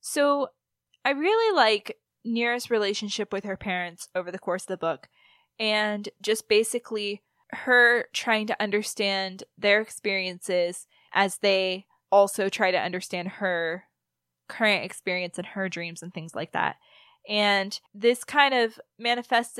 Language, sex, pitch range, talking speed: English, female, 190-240 Hz, 140 wpm